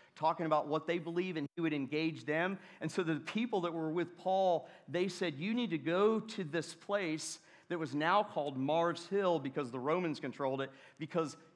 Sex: male